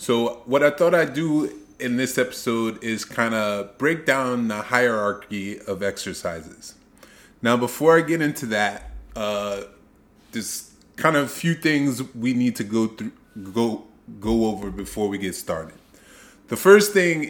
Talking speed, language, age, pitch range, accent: 160 wpm, English, 20-39, 100-125 Hz, American